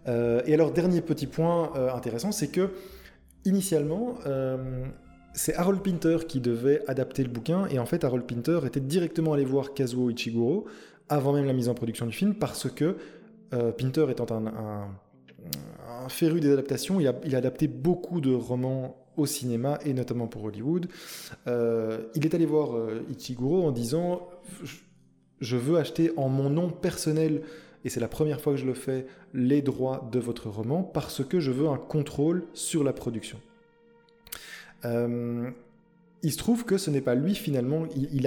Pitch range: 120-165 Hz